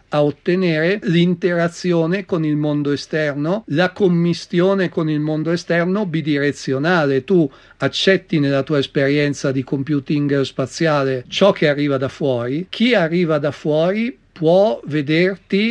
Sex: male